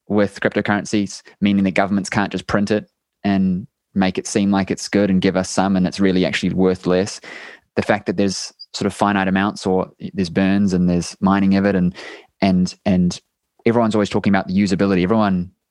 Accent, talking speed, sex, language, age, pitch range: Australian, 200 wpm, male, English, 20-39, 95-110 Hz